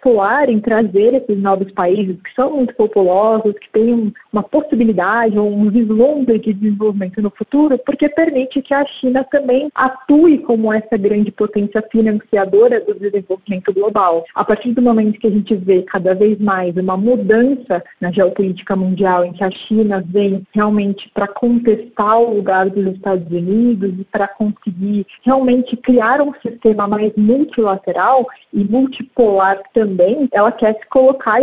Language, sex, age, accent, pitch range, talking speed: Portuguese, female, 40-59, Brazilian, 205-255 Hz, 155 wpm